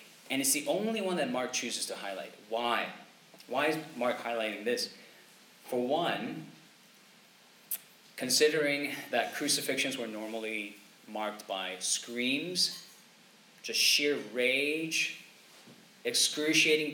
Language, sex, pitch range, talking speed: English, male, 110-150 Hz, 105 wpm